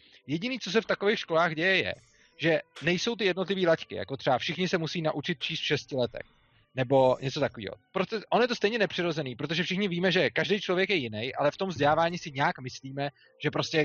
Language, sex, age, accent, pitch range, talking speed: Czech, male, 30-49, native, 145-195 Hz, 210 wpm